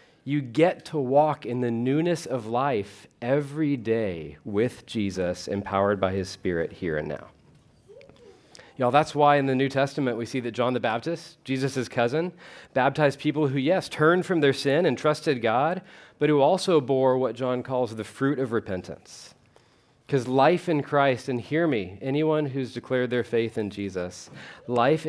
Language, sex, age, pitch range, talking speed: English, male, 40-59, 115-155 Hz, 170 wpm